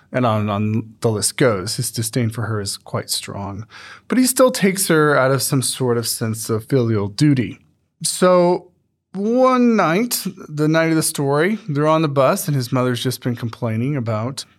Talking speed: 190 wpm